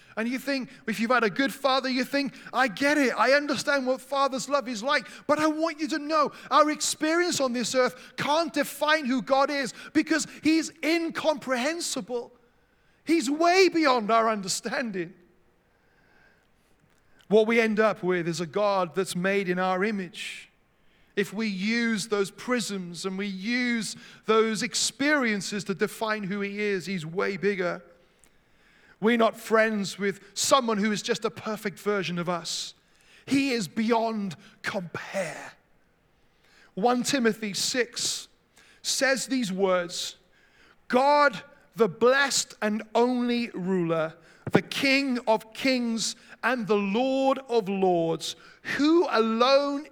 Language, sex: English, male